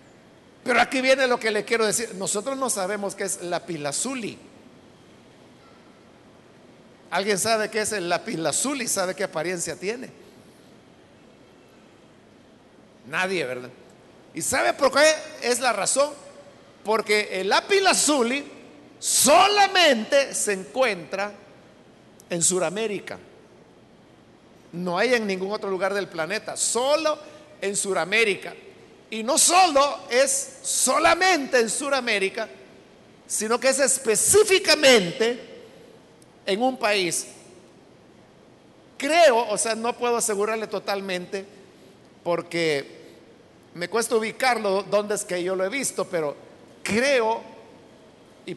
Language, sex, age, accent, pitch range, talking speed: Spanish, male, 50-69, Mexican, 190-260 Hz, 110 wpm